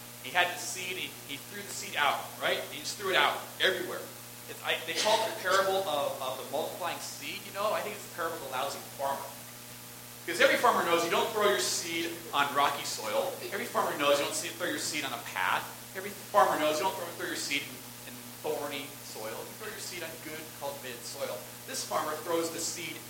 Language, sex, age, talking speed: English, male, 40-59, 230 wpm